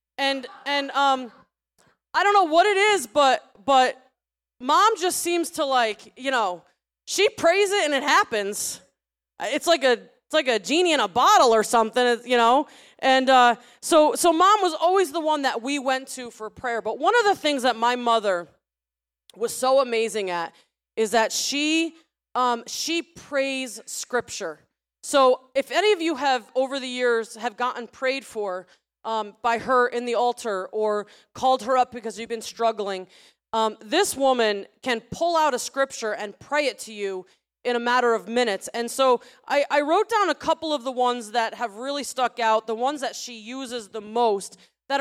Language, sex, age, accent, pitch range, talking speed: English, female, 20-39, American, 225-295 Hz, 190 wpm